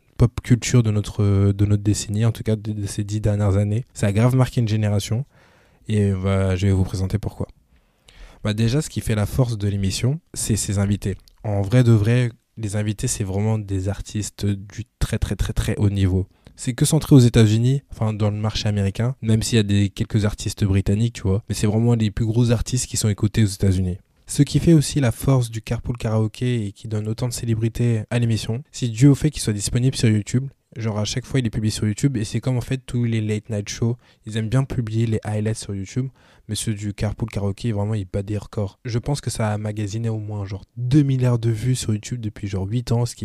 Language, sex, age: French, male, 20-39